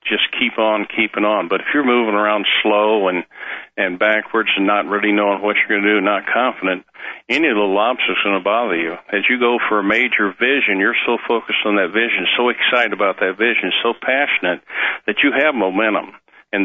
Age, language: 50-69, English